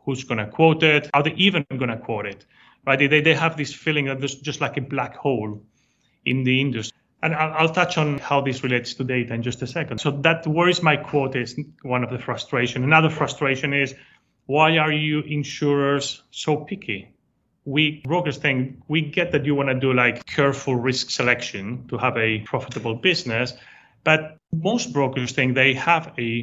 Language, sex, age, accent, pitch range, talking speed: English, male, 30-49, Spanish, 125-150 Hz, 200 wpm